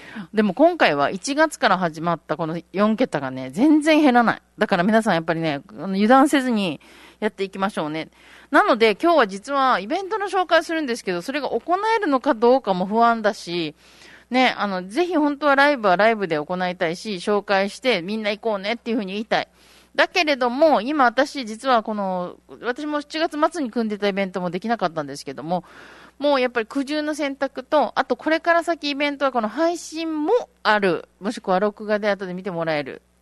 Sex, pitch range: female, 180-280 Hz